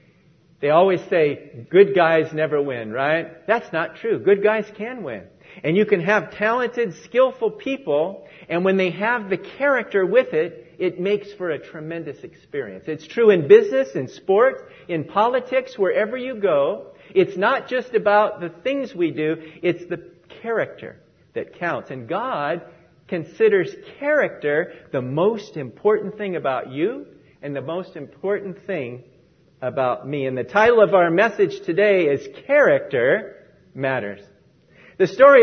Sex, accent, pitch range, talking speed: male, American, 170-250 Hz, 150 wpm